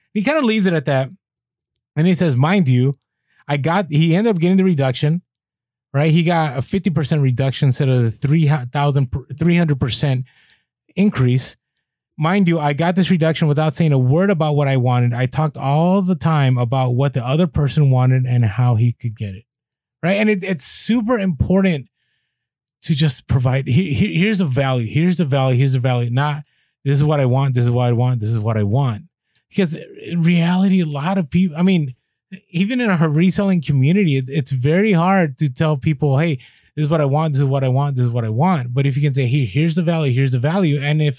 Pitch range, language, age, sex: 130-175 Hz, English, 30-49, male